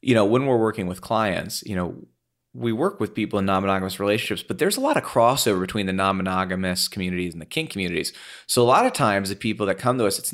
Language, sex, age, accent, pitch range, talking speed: English, male, 30-49, American, 95-115 Hz, 245 wpm